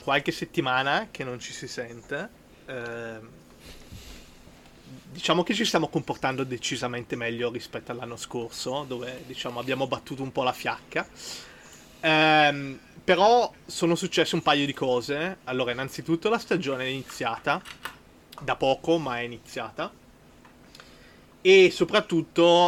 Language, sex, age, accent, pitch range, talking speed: Italian, male, 30-49, native, 120-150 Hz, 125 wpm